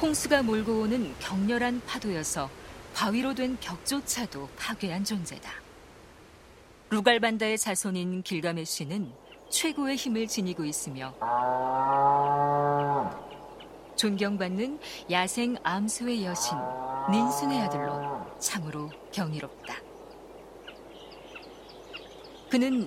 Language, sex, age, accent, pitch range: Korean, female, 40-59, native, 180-255 Hz